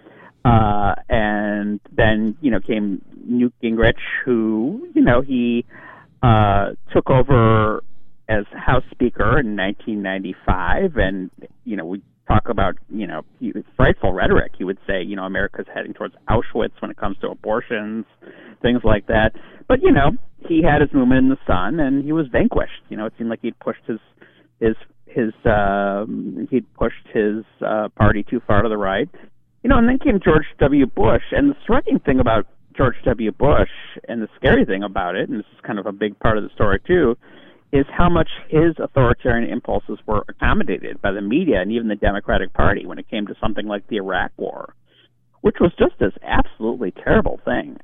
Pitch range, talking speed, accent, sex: 105-130 Hz, 185 wpm, American, male